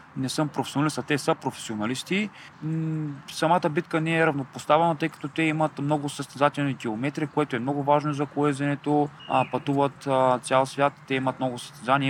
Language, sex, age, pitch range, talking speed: Bulgarian, male, 20-39, 120-155 Hz, 160 wpm